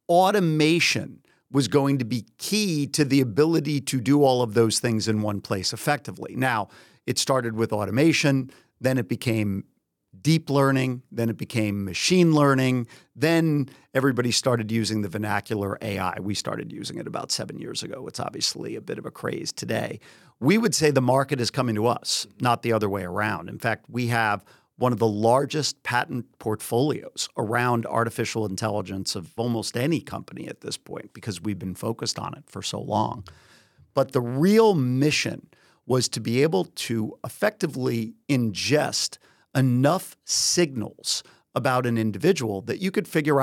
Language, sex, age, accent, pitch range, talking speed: English, male, 50-69, American, 110-145 Hz, 165 wpm